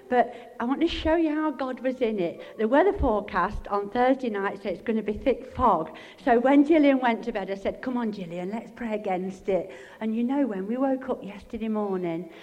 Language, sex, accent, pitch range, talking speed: English, female, British, 200-255 Hz, 235 wpm